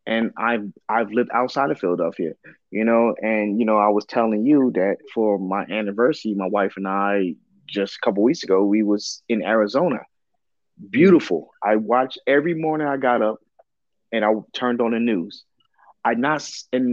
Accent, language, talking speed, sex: American, English, 180 wpm, male